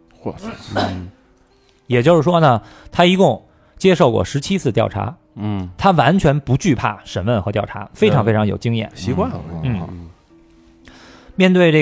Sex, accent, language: male, native, Chinese